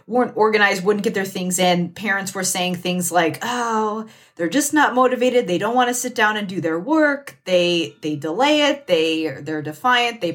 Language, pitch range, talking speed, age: English, 175-245 Hz, 205 wpm, 30-49